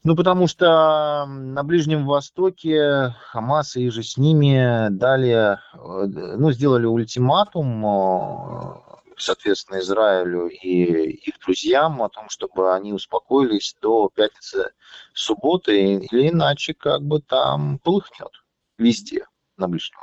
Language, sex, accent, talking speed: Russian, male, native, 110 wpm